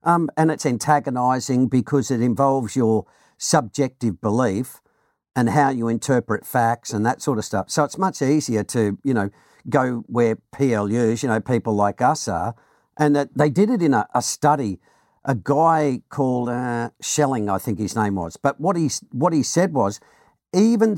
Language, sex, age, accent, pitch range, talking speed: English, male, 50-69, Australian, 115-150 Hz, 180 wpm